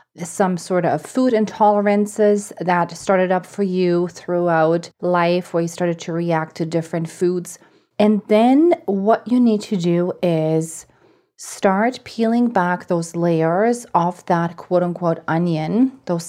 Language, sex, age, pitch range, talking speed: English, female, 30-49, 165-195 Hz, 140 wpm